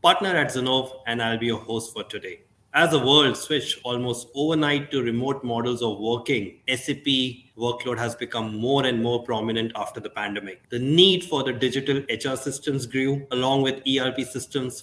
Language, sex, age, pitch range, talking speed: English, male, 30-49, 125-150 Hz, 180 wpm